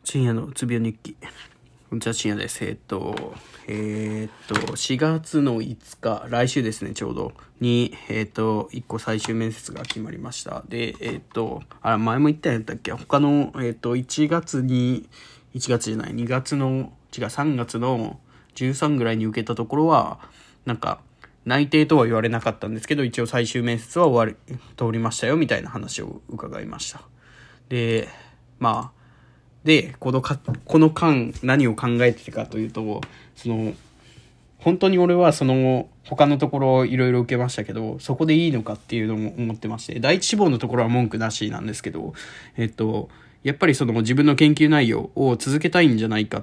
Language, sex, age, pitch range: Japanese, male, 20-39, 110-140 Hz